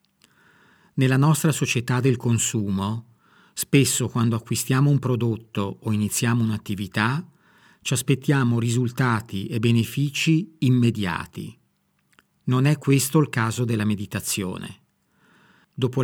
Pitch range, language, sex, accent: 110-140 Hz, Italian, male, native